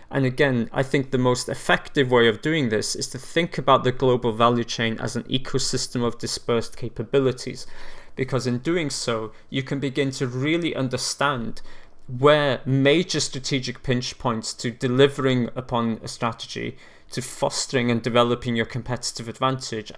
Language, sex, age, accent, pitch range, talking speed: English, male, 20-39, British, 115-135 Hz, 155 wpm